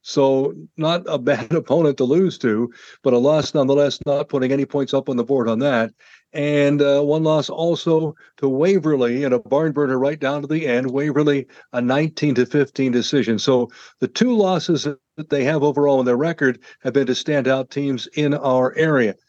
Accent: American